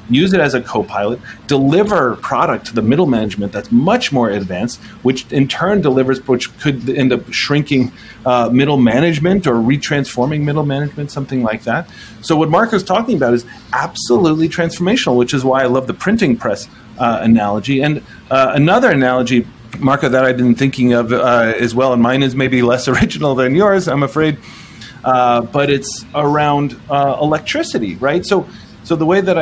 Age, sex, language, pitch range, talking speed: 30-49, male, English, 120-150 Hz, 175 wpm